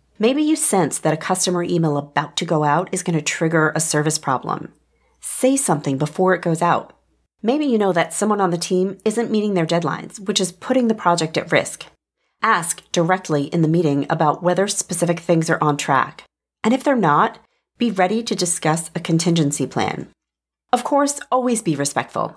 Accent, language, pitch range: American, English, 155-220 Hz